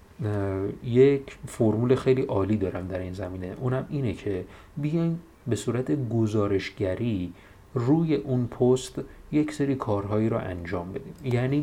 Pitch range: 105-140 Hz